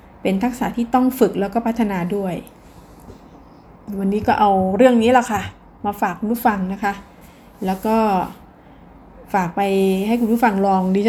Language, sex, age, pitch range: Thai, female, 20-39, 195-240 Hz